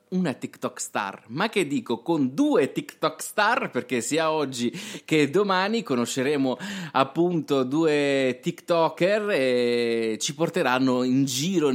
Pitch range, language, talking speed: 120-165 Hz, Italian, 125 wpm